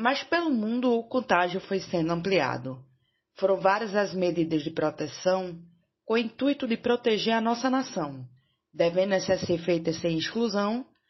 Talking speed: 150 wpm